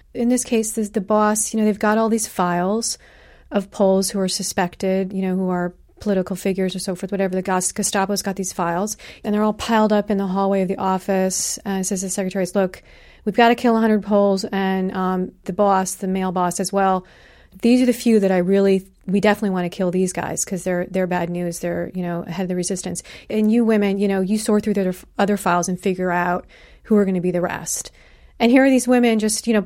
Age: 30-49